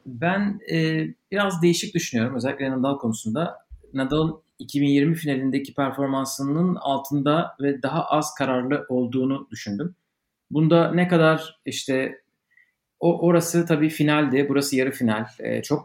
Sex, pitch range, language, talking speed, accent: male, 135-180 Hz, Turkish, 120 wpm, native